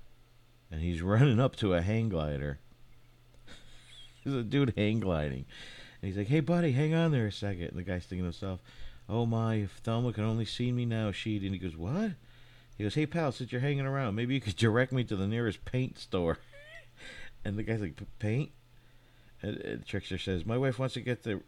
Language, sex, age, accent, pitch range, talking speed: English, male, 50-69, American, 95-125 Hz, 215 wpm